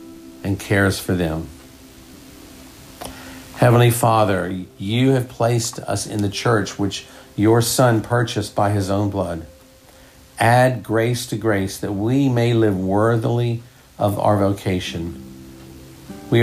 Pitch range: 90-115 Hz